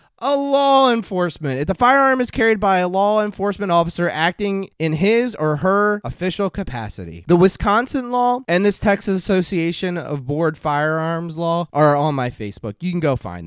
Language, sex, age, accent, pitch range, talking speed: English, male, 20-39, American, 145-210 Hz, 175 wpm